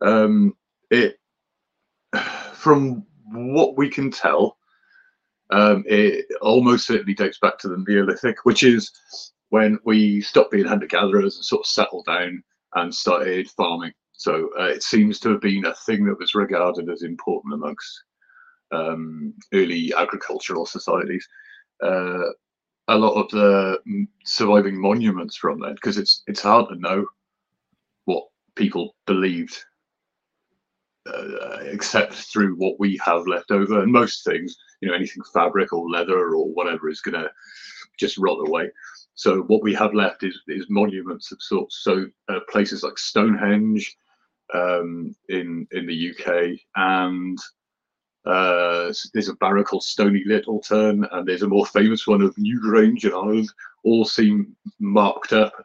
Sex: male